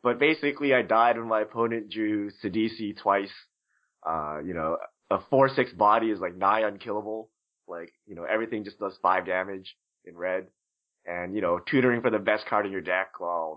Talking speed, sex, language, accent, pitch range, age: 185 wpm, male, English, American, 105-130 Hz, 20-39